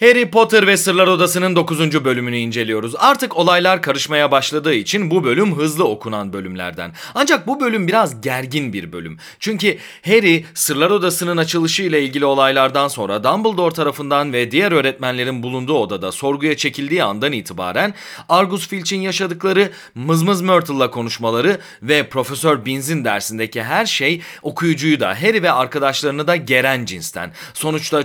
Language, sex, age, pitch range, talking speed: Turkish, male, 30-49, 125-185 Hz, 140 wpm